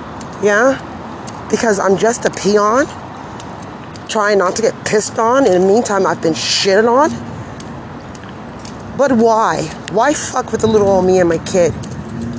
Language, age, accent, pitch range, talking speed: English, 40-59, American, 185-230 Hz, 150 wpm